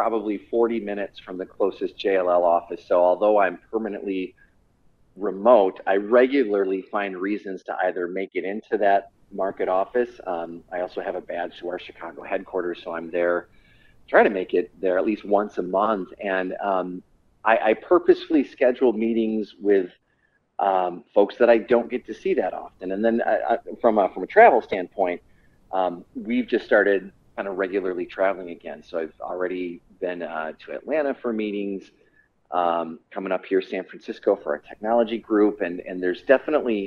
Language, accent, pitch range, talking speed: English, American, 95-130 Hz, 175 wpm